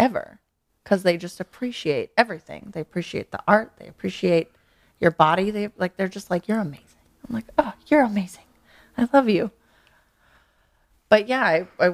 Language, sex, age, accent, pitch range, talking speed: English, female, 20-39, American, 150-210 Hz, 165 wpm